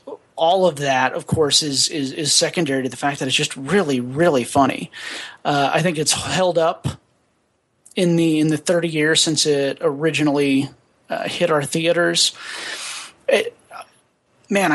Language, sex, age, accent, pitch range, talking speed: English, male, 30-49, American, 140-170 Hz, 160 wpm